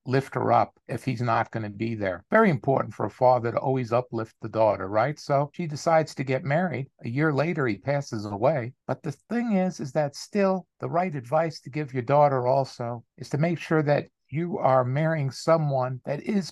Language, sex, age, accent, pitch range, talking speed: English, male, 50-69, American, 130-165 Hz, 215 wpm